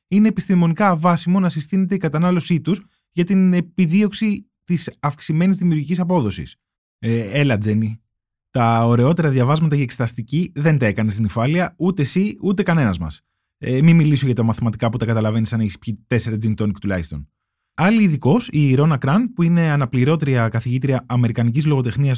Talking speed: 160 wpm